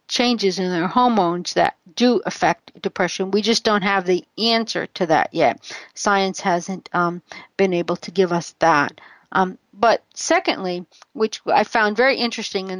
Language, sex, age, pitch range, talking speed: English, female, 50-69, 185-225 Hz, 165 wpm